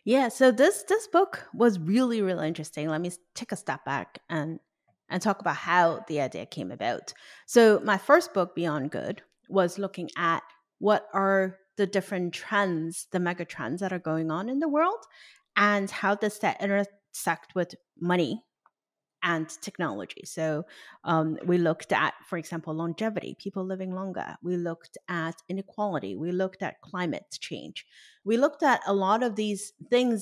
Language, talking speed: English, 170 wpm